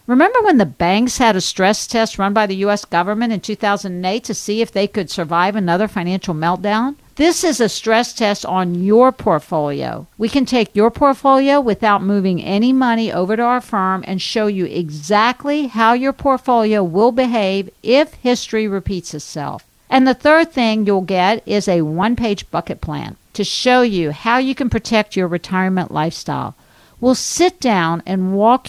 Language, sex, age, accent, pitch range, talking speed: English, female, 50-69, American, 190-250 Hz, 175 wpm